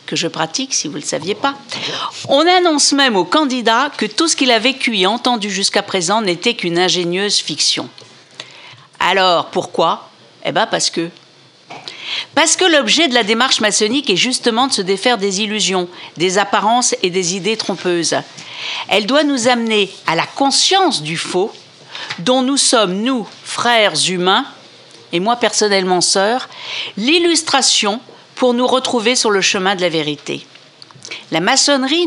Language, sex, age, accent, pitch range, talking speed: French, female, 50-69, French, 195-265 Hz, 160 wpm